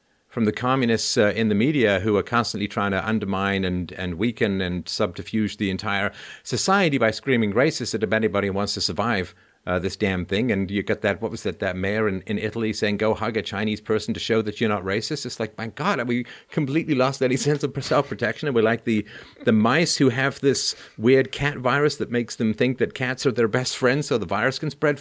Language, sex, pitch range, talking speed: English, male, 105-135 Hz, 235 wpm